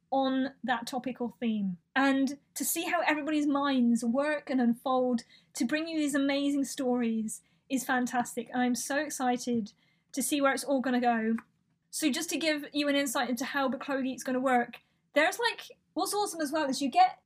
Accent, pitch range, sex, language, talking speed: British, 245-295 Hz, female, English, 185 wpm